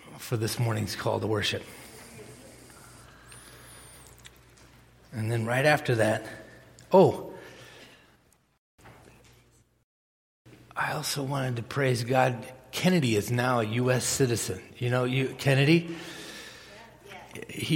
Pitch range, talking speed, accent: 115-135 Hz, 100 wpm, American